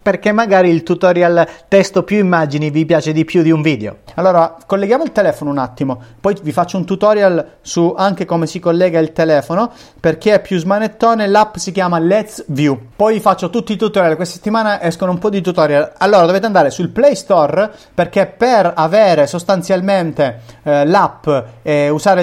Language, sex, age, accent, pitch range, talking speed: Italian, male, 30-49, native, 155-205 Hz, 185 wpm